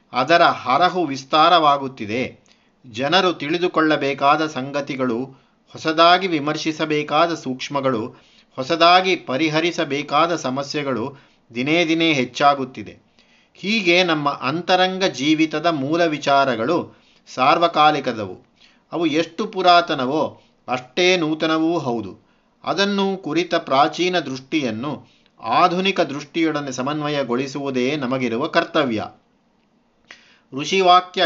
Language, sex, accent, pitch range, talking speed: Kannada, male, native, 135-170 Hz, 75 wpm